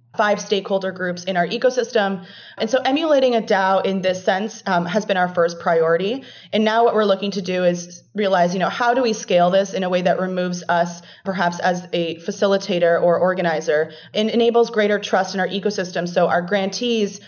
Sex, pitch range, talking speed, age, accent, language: female, 175-200 Hz, 200 wpm, 30-49, American, English